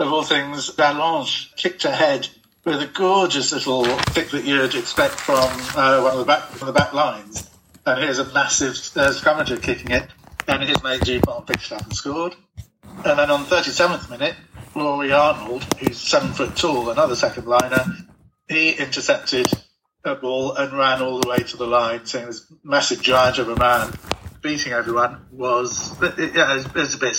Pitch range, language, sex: 120-145 Hz, English, male